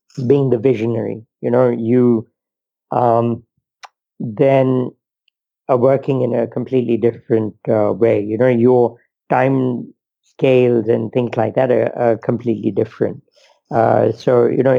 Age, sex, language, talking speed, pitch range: 50-69, male, English, 135 wpm, 120-135 Hz